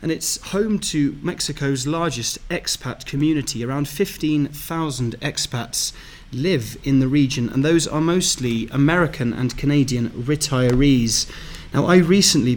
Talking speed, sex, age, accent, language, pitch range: 125 wpm, male, 30-49, British, English, 125-150 Hz